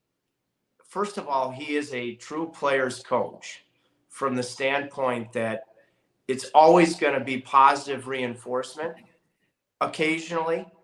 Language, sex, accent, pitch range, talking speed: English, male, American, 120-145 Hz, 115 wpm